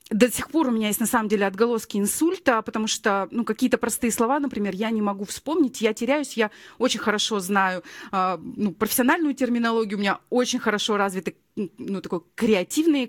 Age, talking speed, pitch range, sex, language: 30-49, 190 wpm, 205-260 Hz, female, Russian